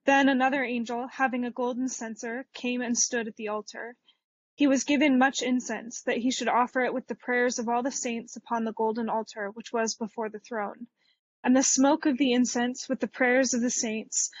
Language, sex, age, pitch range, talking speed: English, female, 20-39, 230-260 Hz, 215 wpm